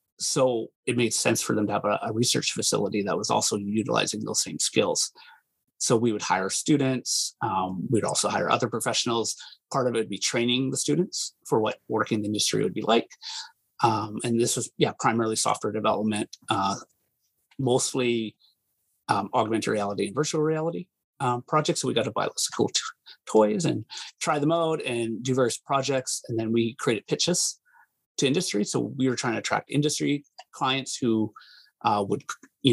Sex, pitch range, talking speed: male, 110-150 Hz, 185 wpm